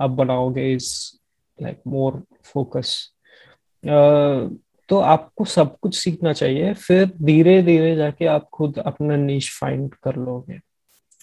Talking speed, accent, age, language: 75 wpm, Indian, 20-39, English